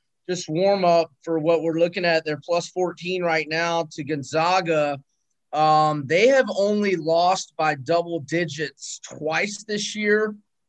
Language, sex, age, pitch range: English, male, 30-49, 150-175 Hz